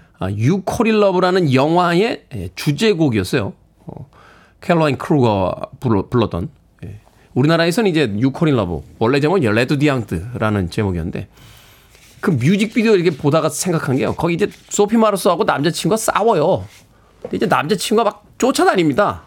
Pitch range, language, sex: 120-195 Hz, Korean, male